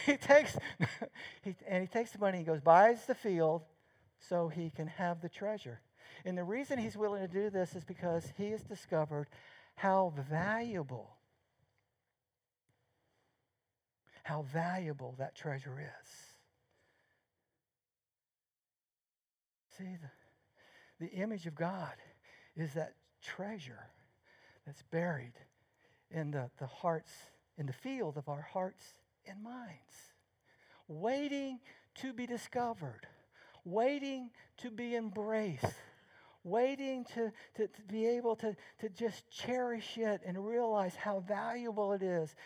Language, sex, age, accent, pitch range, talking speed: English, male, 60-79, American, 165-235 Hz, 120 wpm